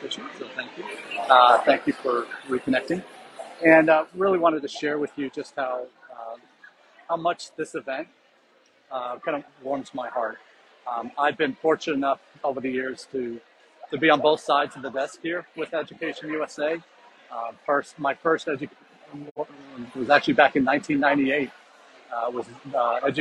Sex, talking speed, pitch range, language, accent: male, 155 wpm, 130-160 Hz, English, American